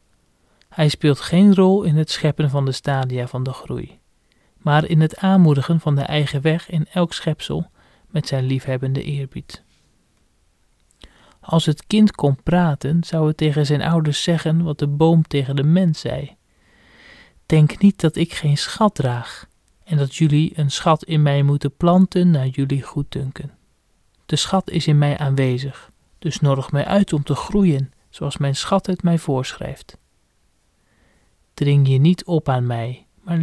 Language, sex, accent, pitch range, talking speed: Dutch, male, Dutch, 140-170 Hz, 165 wpm